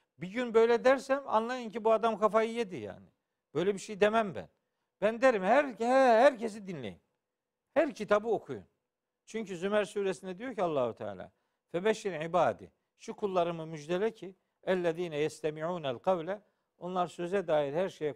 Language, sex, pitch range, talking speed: Turkish, male, 170-230 Hz, 150 wpm